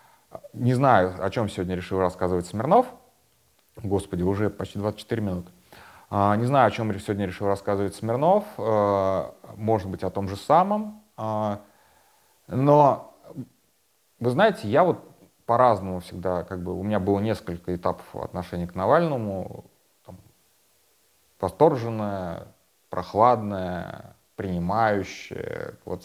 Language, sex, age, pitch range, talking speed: Russian, male, 30-49, 90-110 Hz, 110 wpm